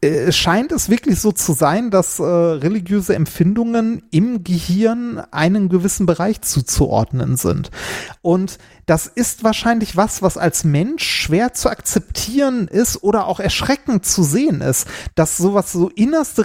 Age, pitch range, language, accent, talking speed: 30-49, 160-220 Hz, German, German, 140 wpm